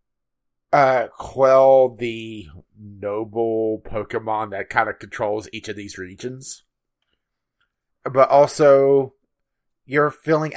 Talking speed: 95 wpm